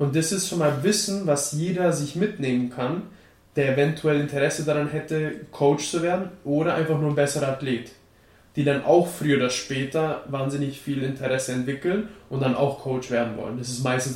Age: 20-39